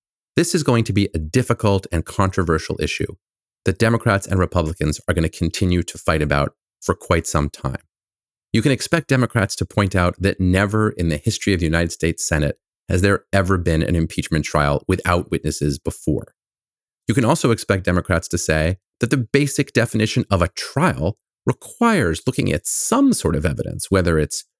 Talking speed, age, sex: 185 wpm, 30-49, male